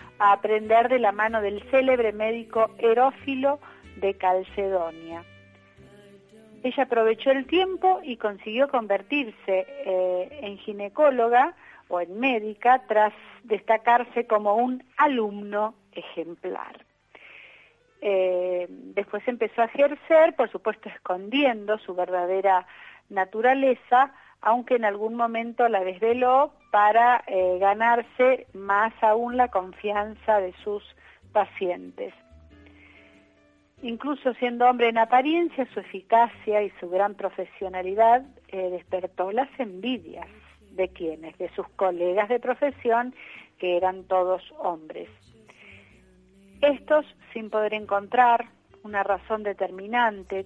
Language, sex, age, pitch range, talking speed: Spanish, female, 40-59, 185-245 Hz, 105 wpm